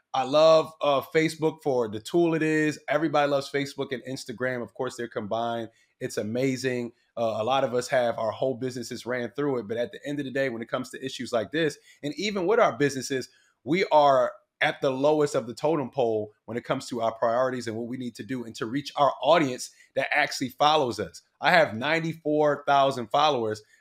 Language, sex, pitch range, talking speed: English, male, 120-150 Hz, 215 wpm